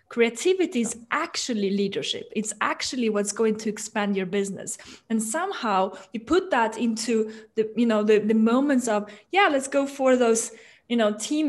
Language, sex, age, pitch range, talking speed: English, female, 20-39, 210-265 Hz, 170 wpm